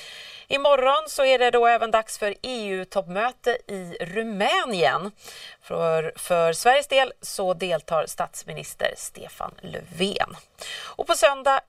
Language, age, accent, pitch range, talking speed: Swedish, 30-49, native, 165-235 Hz, 120 wpm